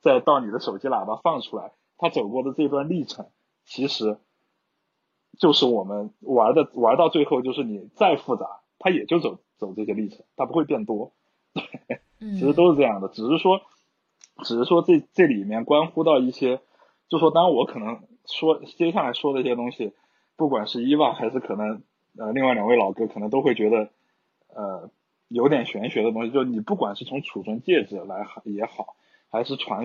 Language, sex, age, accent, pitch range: Chinese, male, 20-39, native, 110-140 Hz